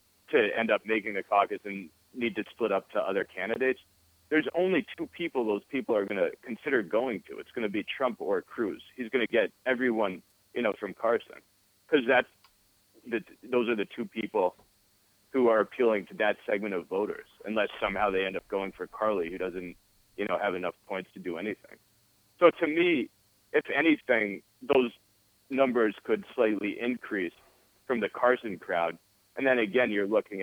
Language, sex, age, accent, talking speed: English, male, 40-59, American, 185 wpm